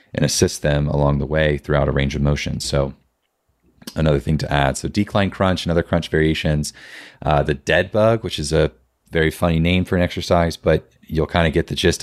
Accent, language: American, English